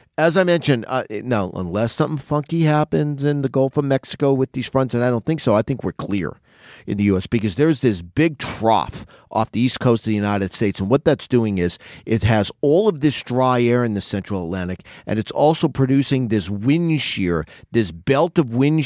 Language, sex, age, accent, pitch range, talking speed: English, male, 40-59, American, 115-145 Hz, 220 wpm